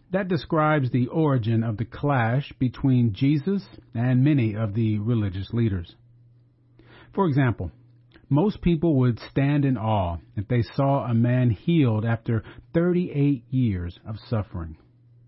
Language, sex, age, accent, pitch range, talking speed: English, male, 40-59, American, 110-140 Hz, 135 wpm